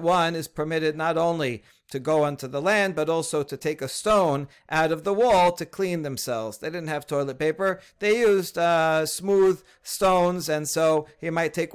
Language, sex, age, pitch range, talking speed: English, male, 40-59, 150-180 Hz, 195 wpm